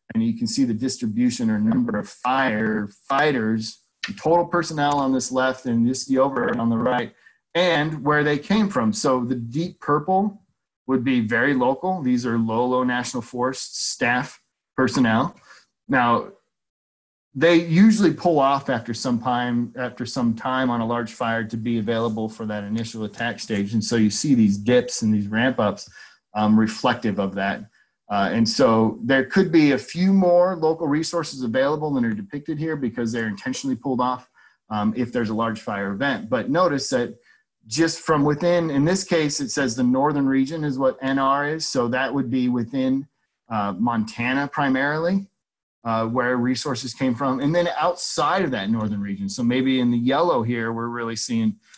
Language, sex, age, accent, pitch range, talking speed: English, male, 30-49, American, 115-155 Hz, 180 wpm